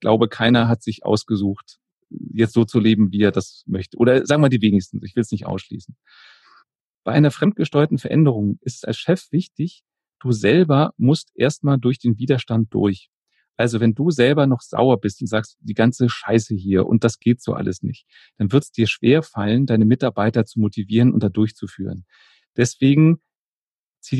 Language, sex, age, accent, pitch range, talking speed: German, male, 40-59, German, 110-135 Hz, 185 wpm